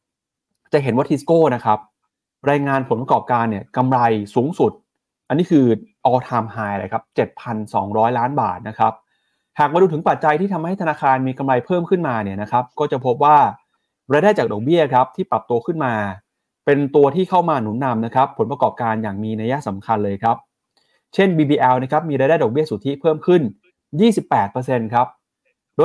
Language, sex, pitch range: Thai, male, 125-170 Hz